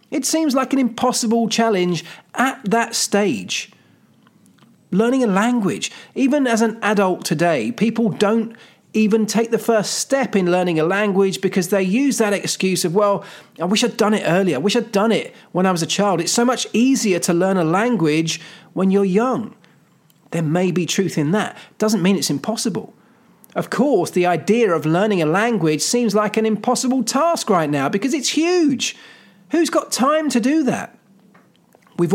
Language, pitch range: English, 180-230 Hz